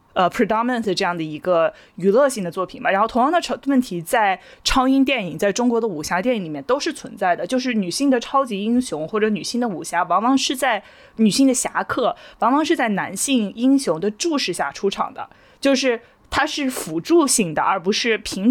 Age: 20-39